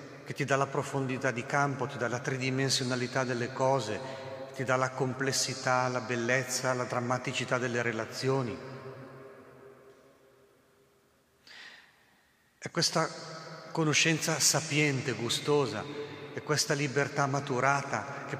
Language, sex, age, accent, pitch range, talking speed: Italian, male, 40-59, native, 115-135 Hz, 110 wpm